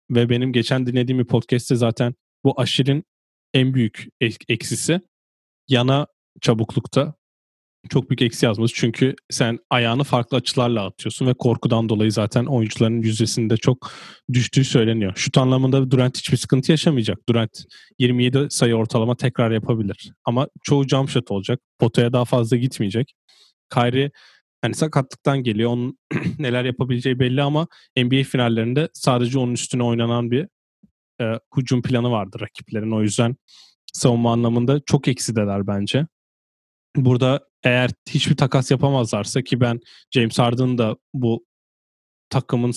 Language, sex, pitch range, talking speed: Turkish, male, 115-135 Hz, 130 wpm